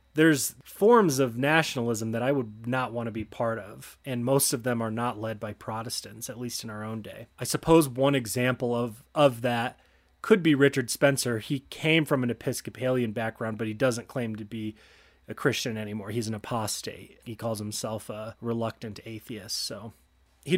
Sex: male